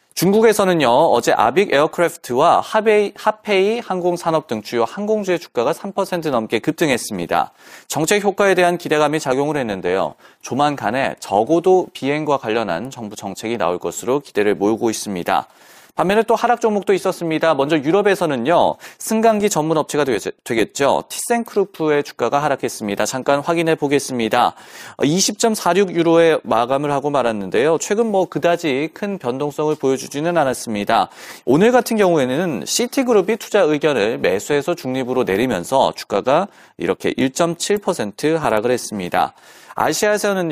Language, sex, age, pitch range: Korean, male, 30-49, 135-200 Hz